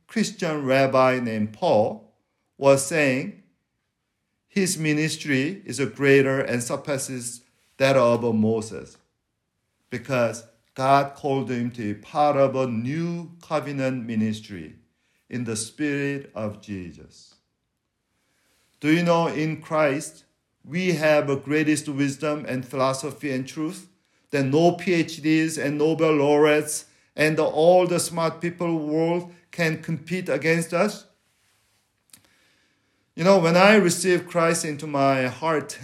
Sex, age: male, 50-69